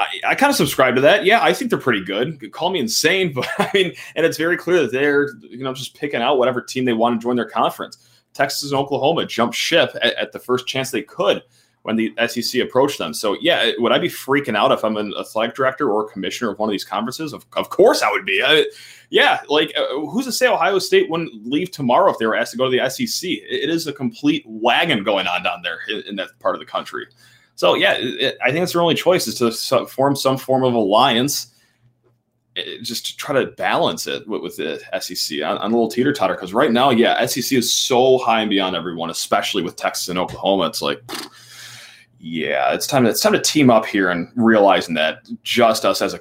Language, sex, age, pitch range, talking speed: English, male, 20-39, 110-160 Hz, 235 wpm